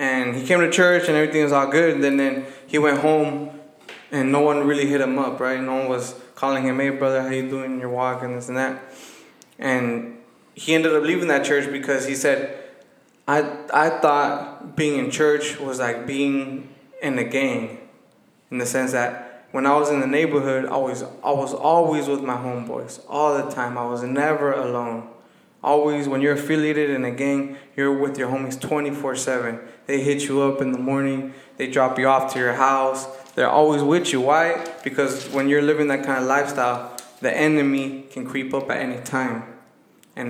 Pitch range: 130-145 Hz